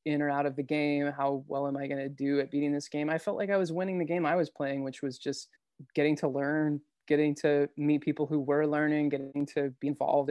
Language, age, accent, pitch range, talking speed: English, 20-39, American, 140-160 Hz, 260 wpm